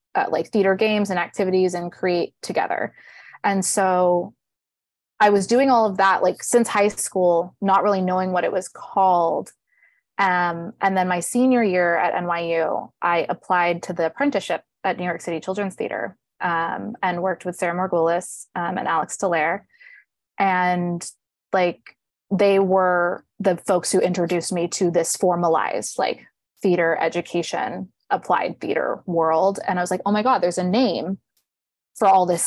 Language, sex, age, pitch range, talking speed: English, female, 20-39, 170-195 Hz, 165 wpm